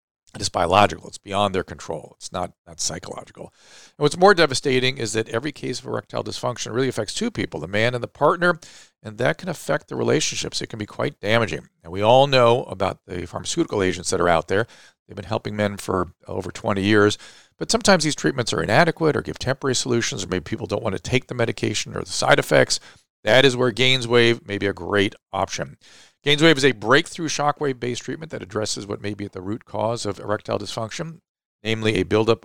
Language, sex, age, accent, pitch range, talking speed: English, male, 50-69, American, 105-135 Hz, 215 wpm